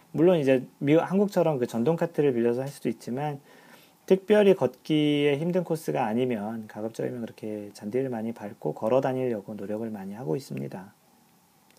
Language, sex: Korean, male